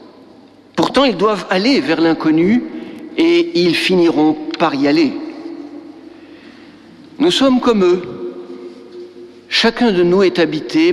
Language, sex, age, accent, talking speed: French, male, 60-79, French, 115 wpm